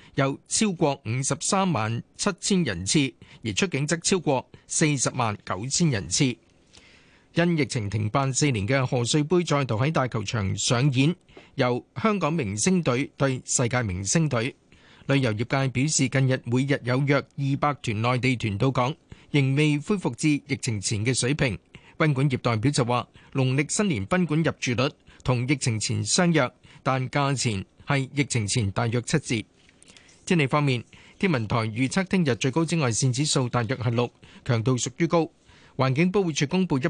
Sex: male